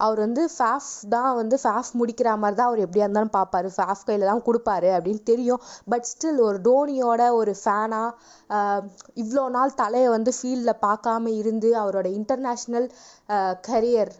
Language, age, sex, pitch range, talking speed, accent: Tamil, 20-39, female, 210-250 Hz, 150 wpm, native